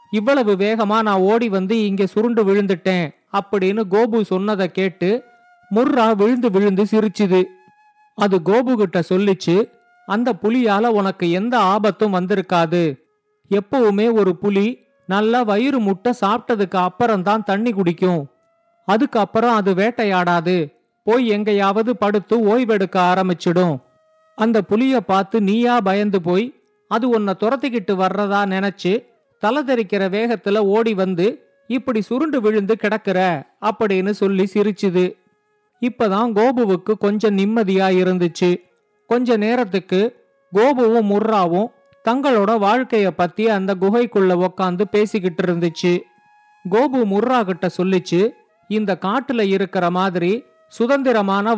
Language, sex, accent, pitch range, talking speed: Tamil, male, native, 190-230 Hz, 105 wpm